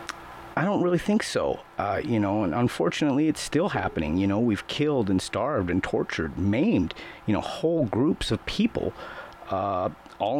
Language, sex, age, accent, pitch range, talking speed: English, male, 40-59, American, 115-155 Hz, 175 wpm